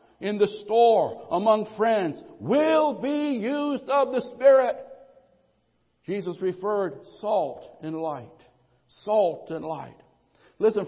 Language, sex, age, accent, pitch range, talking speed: English, male, 60-79, American, 170-235 Hz, 110 wpm